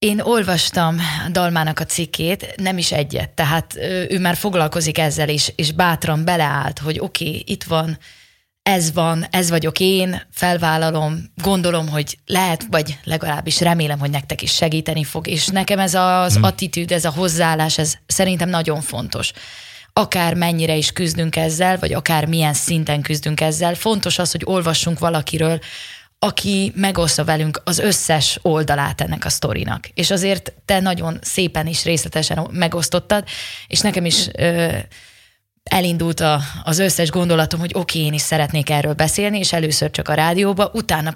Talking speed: 155 wpm